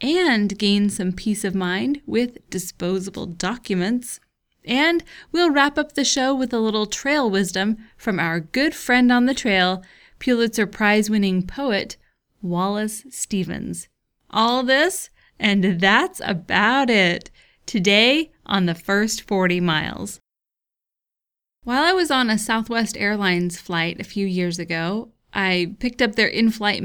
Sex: female